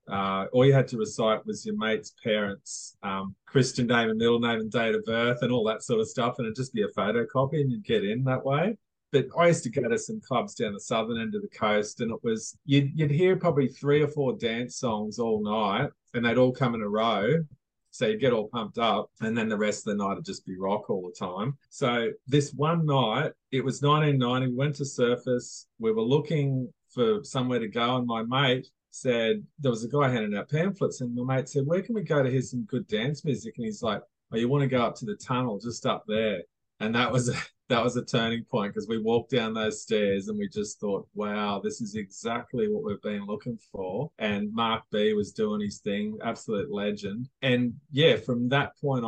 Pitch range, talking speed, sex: 110-145 Hz, 235 wpm, male